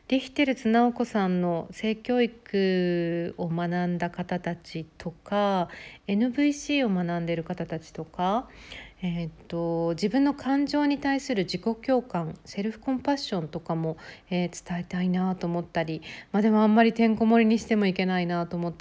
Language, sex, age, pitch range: Japanese, female, 50-69, 175-225 Hz